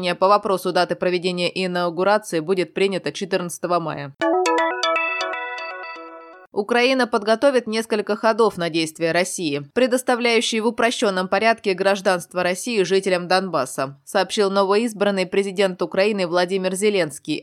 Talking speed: 105 wpm